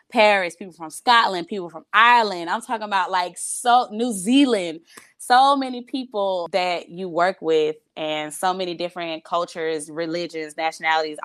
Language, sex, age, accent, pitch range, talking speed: English, female, 20-39, American, 155-200 Hz, 150 wpm